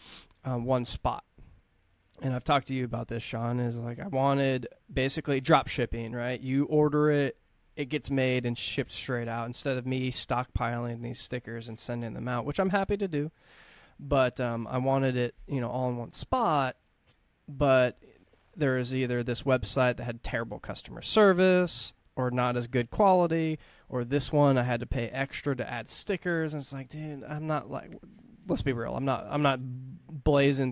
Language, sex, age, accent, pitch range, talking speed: English, male, 20-39, American, 120-140 Hz, 190 wpm